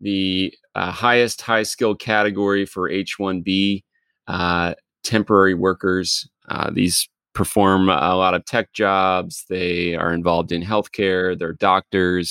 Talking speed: 120 wpm